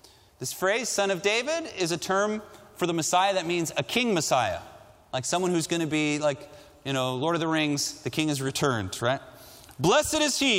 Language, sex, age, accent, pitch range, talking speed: Dutch, male, 30-49, American, 140-200 Hz, 210 wpm